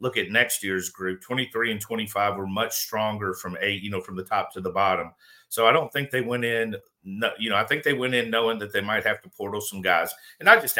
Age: 50-69